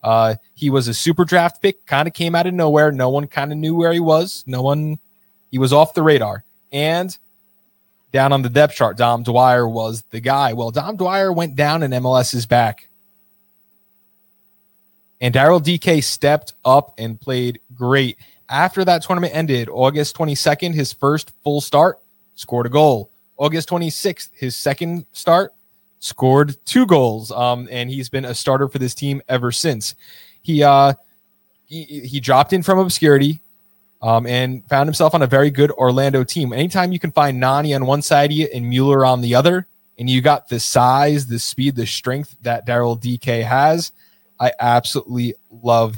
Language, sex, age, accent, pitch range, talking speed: English, male, 20-39, American, 125-165 Hz, 180 wpm